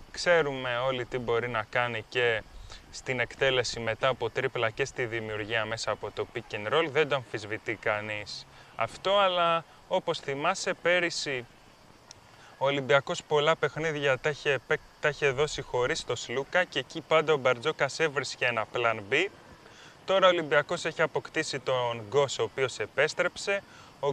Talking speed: 150 wpm